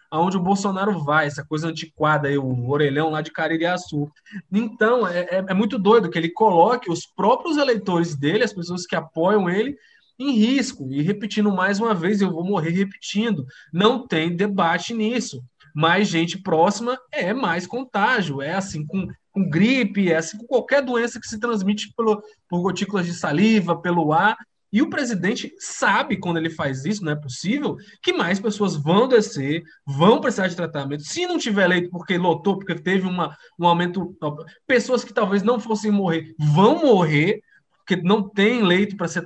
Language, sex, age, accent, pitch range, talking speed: Portuguese, male, 20-39, Brazilian, 165-220 Hz, 175 wpm